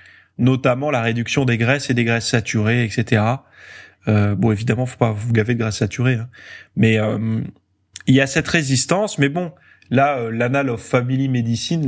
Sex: male